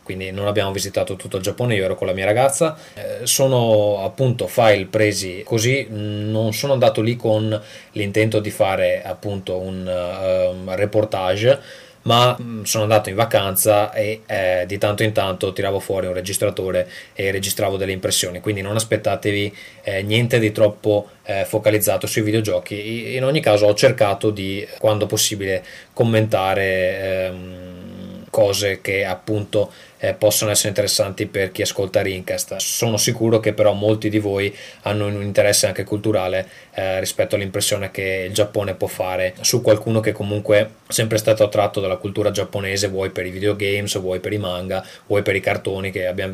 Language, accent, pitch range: Italian, native, 95-110 Hz